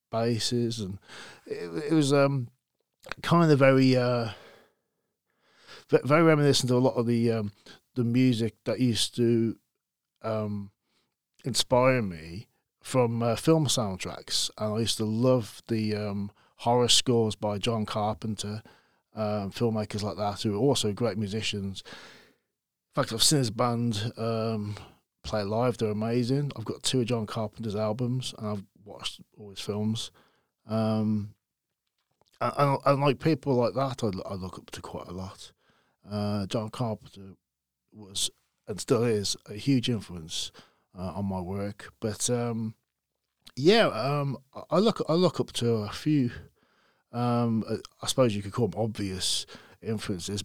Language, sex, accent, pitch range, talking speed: English, male, British, 105-130 Hz, 150 wpm